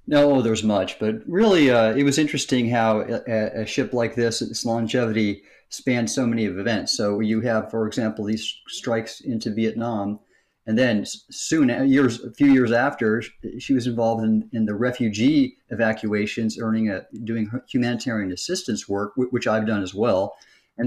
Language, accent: English, American